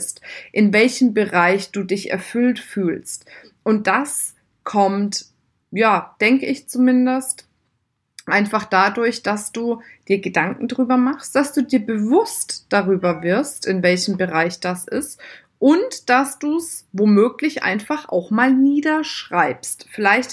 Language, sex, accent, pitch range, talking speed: German, female, German, 205-270 Hz, 125 wpm